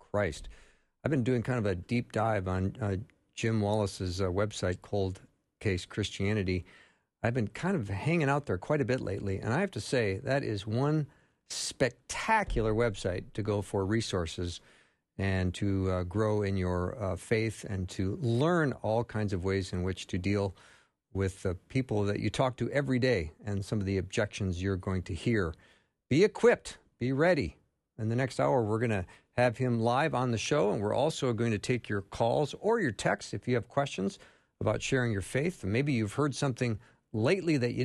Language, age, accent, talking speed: English, 50-69, American, 195 wpm